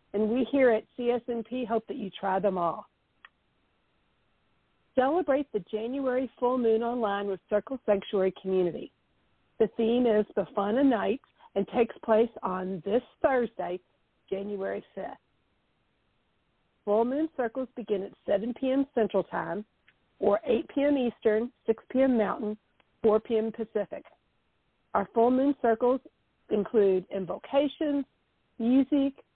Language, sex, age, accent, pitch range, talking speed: English, female, 50-69, American, 210-255 Hz, 125 wpm